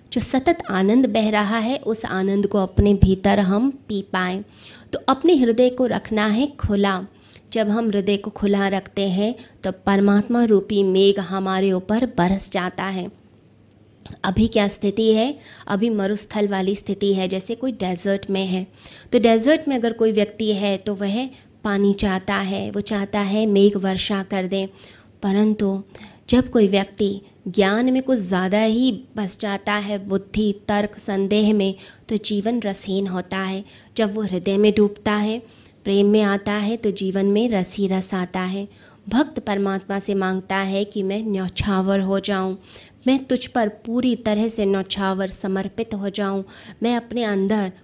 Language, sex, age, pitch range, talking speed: Hindi, female, 20-39, 195-220 Hz, 165 wpm